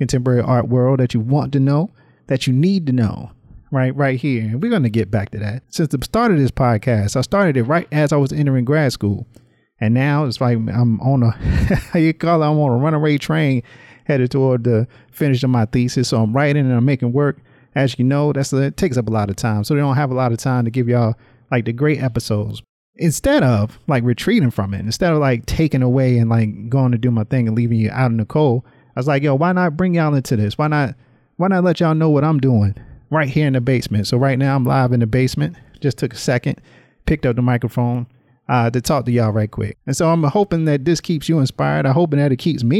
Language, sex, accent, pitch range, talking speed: English, male, American, 120-145 Hz, 260 wpm